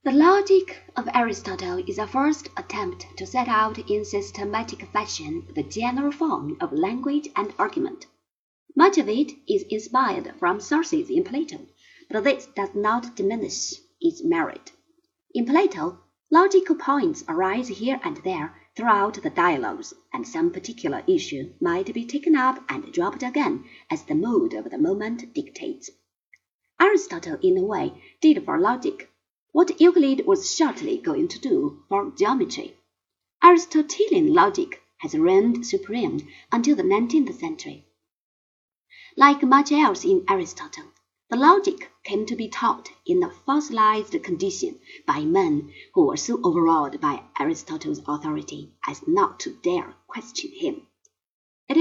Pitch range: 280-355 Hz